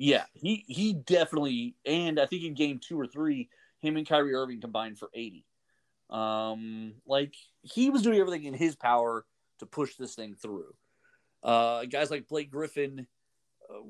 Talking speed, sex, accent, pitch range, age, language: 170 wpm, male, American, 120-155 Hz, 30-49, English